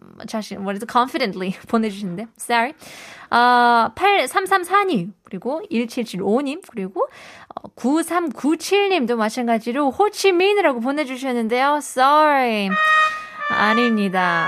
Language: Korean